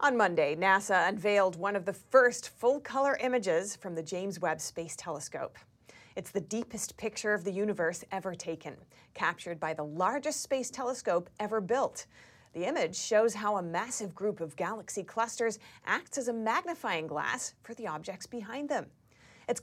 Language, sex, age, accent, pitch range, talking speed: English, female, 30-49, American, 175-240 Hz, 165 wpm